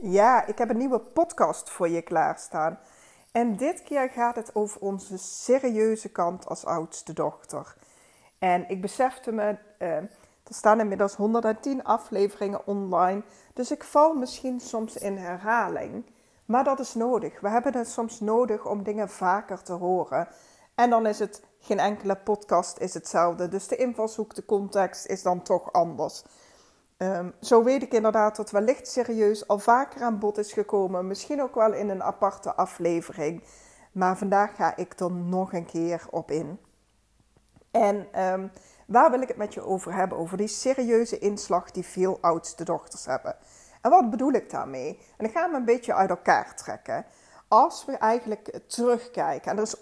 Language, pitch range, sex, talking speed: Dutch, 185-235 Hz, female, 170 wpm